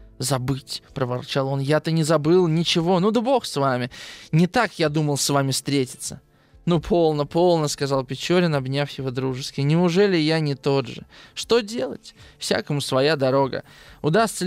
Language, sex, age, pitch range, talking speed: Russian, male, 20-39, 135-185 Hz, 160 wpm